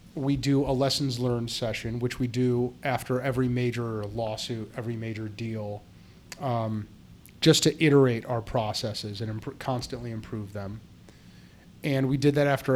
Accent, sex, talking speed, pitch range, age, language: American, male, 145 wpm, 115-140 Hz, 30-49, English